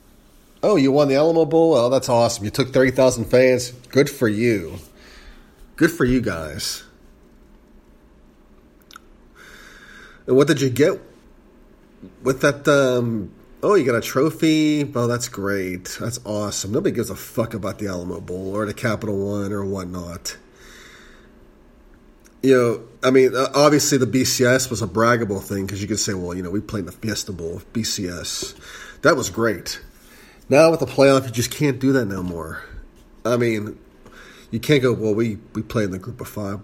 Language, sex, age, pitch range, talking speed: English, male, 30-49, 105-135 Hz, 175 wpm